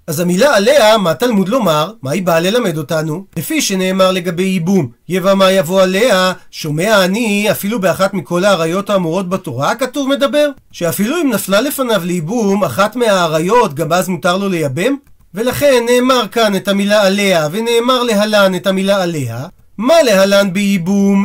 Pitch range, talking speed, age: 185-245 Hz, 155 wpm, 40-59